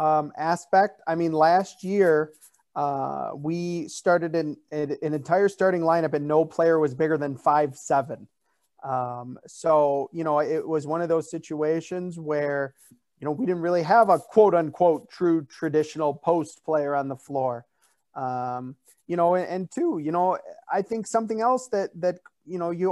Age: 30-49